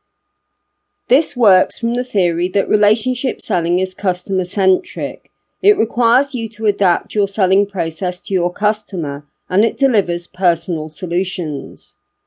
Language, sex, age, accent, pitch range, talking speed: English, female, 40-59, British, 175-220 Hz, 125 wpm